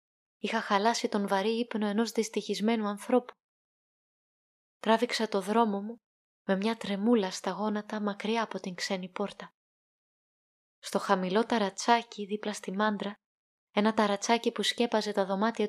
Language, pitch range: Greek, 200-240 Hz